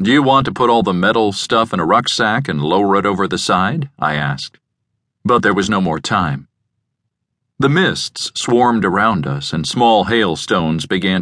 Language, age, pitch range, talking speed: English, 50-69, 80-110 Hz, 185 wpm